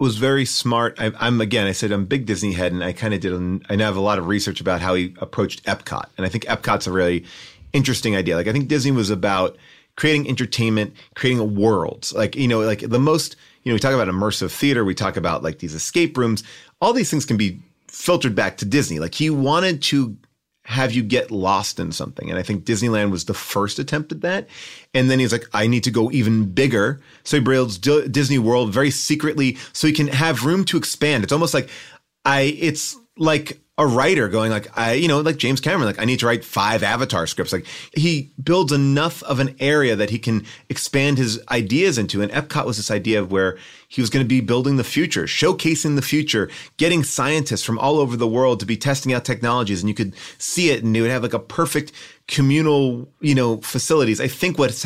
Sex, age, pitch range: male, 30-49, 105-145 Hz